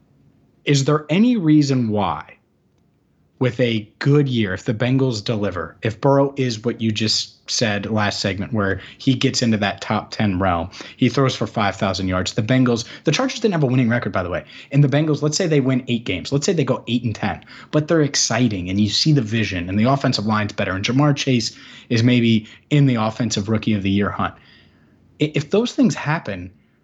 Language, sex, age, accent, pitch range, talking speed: English, male, 30-49, American, 110-135 Hz, 210 wpm